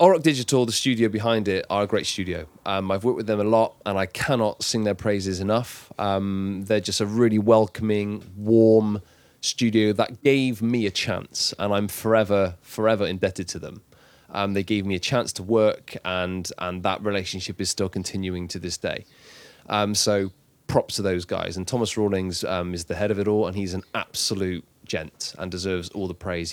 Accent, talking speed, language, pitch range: British, 200 wpm, English, 95-115 Hz